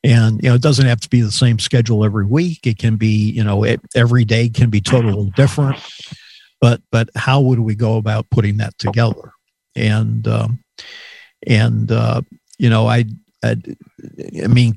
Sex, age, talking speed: male, 50-69, 180 wpm